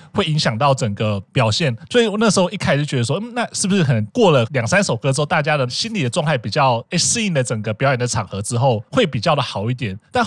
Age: 20-39